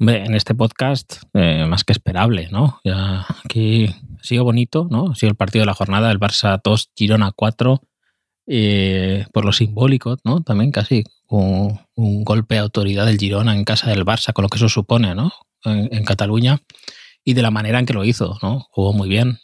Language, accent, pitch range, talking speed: Spanish, Spanish, 105-130 Hz, 190 wpm